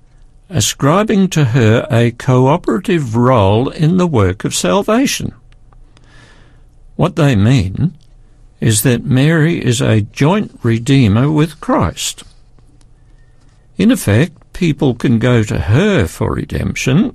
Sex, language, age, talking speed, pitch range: male, English, 60-79, 110 wpm, 115-150 Hz